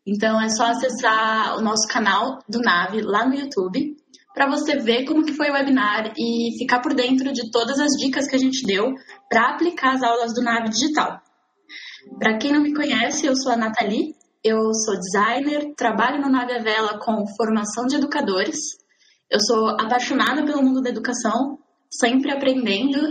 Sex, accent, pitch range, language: female, Brazilian, 220-275 Hz, Portuguese